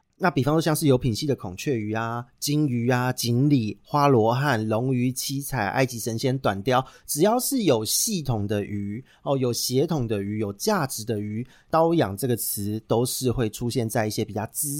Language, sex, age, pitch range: Chinese, male, 30-49, 110-150 Hz